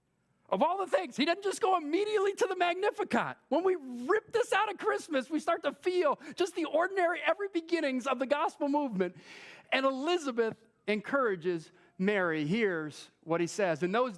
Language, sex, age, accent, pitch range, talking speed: English, male, 40-59, American, 200-310 Hz, 180 wpm